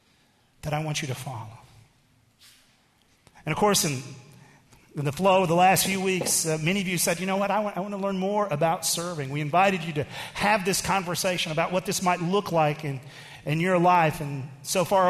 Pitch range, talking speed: 140-195 Hz, 220 wpm